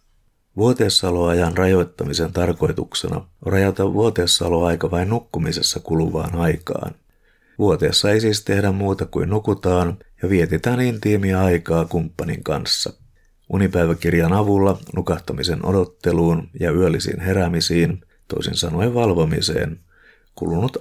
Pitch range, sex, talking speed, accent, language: 85-95 Hz, male, 100 wpm, native, Finnish